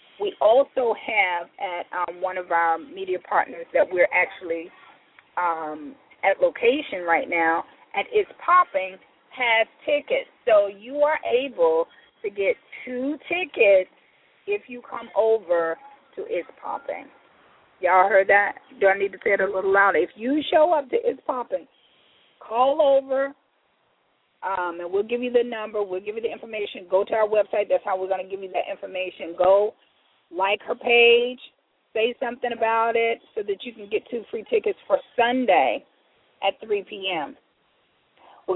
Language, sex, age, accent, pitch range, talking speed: English, female, 30-49, American, 185-295 Hz, 165 wpm